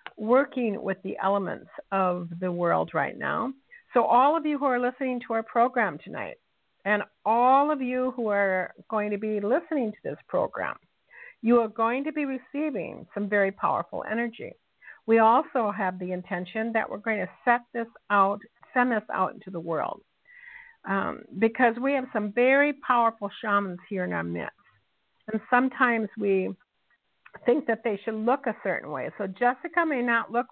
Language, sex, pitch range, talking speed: English, female, 185-245 Hz, 175 wpm